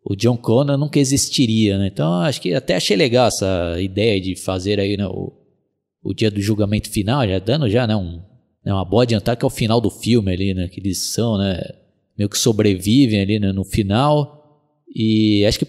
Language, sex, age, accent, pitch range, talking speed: Portuguese, male, 20-39, Brazilian, 100-135 Hz, 210 wpm